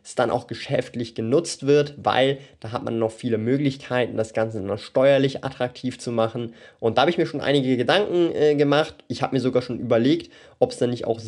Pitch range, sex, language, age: 115-135 Hz, male, German, 20-39